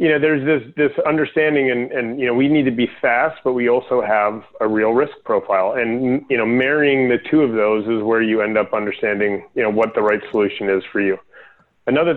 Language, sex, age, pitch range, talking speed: English, male, 30-49, 105-130 Hz, 230 wpm